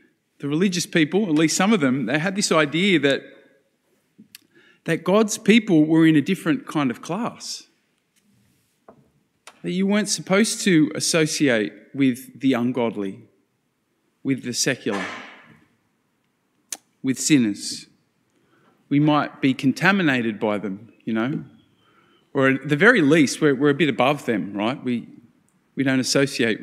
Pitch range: 130-175 Hz